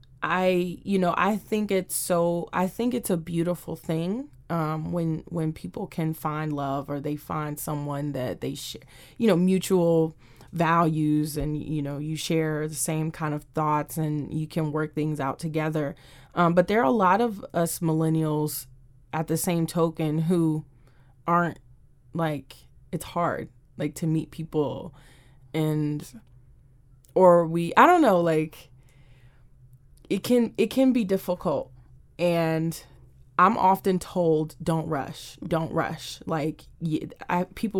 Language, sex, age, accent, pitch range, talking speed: English, female, 20-39, American, 150-180 Hz, 150 wpm